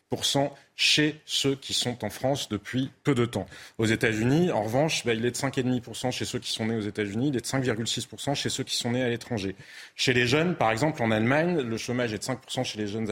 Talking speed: 240 wpm